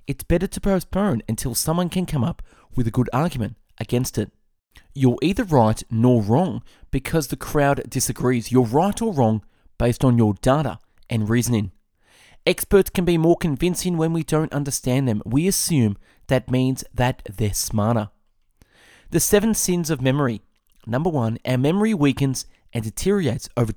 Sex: male